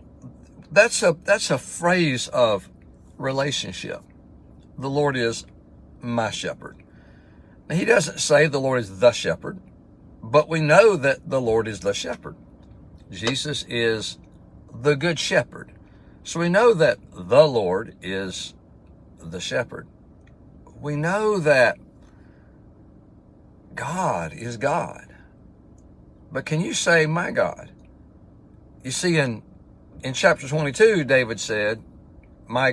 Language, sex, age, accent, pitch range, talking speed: English, male, 60-79, American, 100-150 Hz, 115 wpm